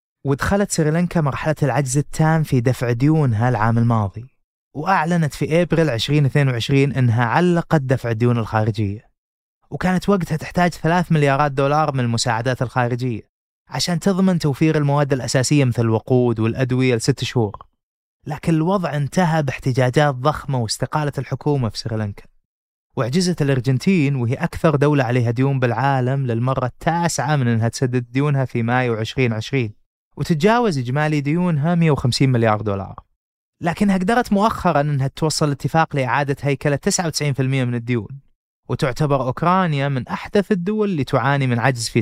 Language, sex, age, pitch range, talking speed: Arabic, male, 20-39, 125-155 Hz, 130 wpm